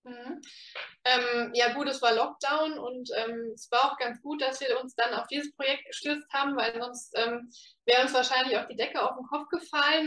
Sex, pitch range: female, 230-270 Hz